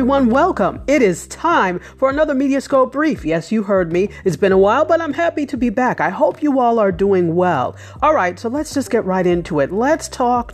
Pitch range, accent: 165-240 Hz, American